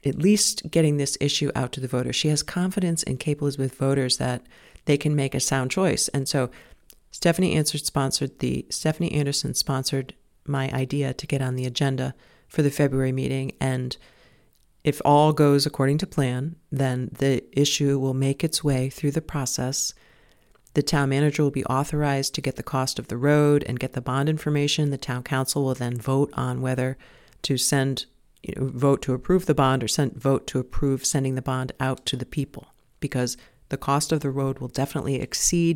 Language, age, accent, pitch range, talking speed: English, 40-59, American, 130-150 Hz, 185 wpm